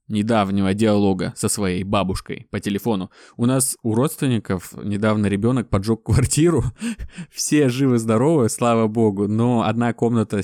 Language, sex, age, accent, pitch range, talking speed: Russian, male, 20-39, native, 110-160 Hz, 130 wpm